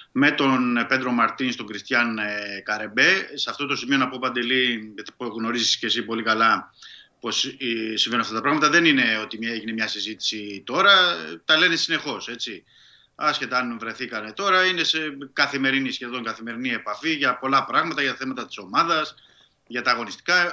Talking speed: 160 wpm